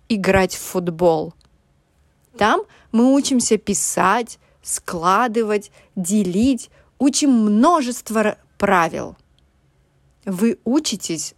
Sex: female